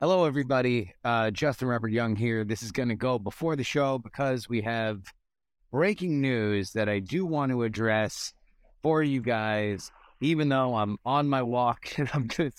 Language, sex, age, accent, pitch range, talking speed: English, male, 30-49, American, 110-135 Hz, 175 wpm